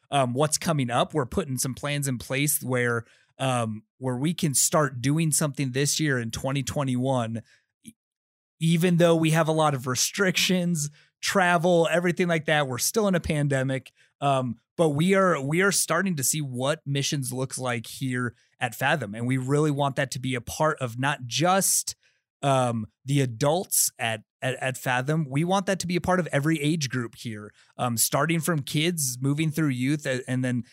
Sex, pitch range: male, 130-165 Hz